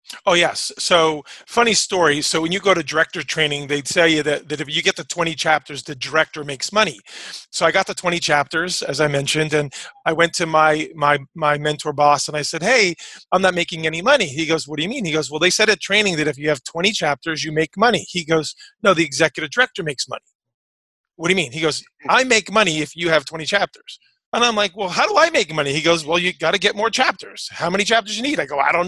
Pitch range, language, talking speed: 150-180 Hz, English, 260 wpm